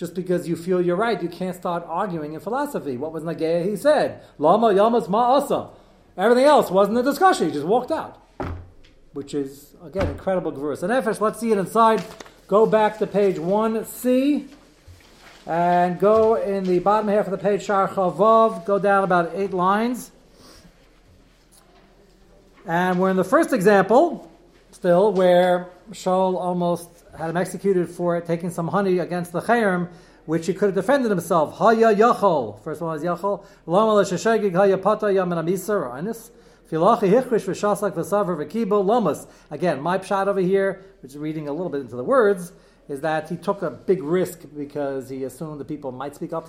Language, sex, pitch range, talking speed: English, male, 165-210 Hz, 155 wpm